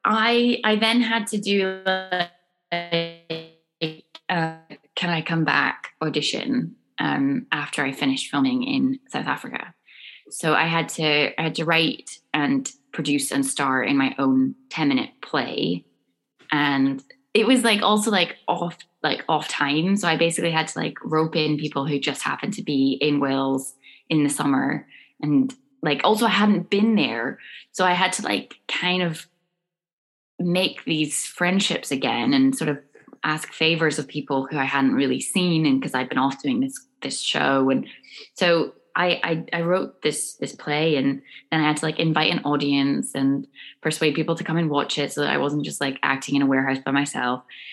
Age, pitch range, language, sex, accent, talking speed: 20-39, 145-215 Hz, English, female, British, 185 wpm